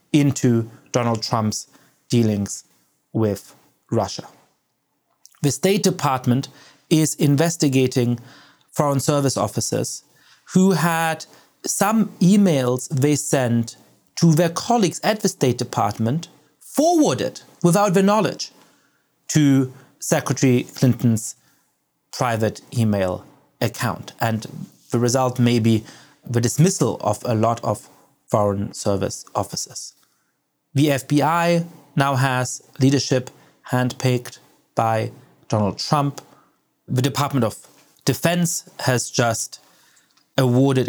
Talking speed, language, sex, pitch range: 100 wpm, English, male, 120-150 Hz